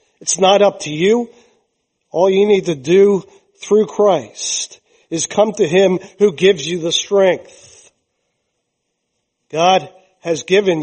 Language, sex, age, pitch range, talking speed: English, male, 50-69, 185-225 Hz, 135 wpm